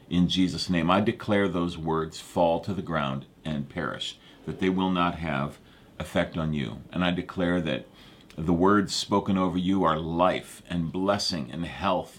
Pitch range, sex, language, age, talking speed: 80-95 Hz, male, English, 50-69, 175 wpm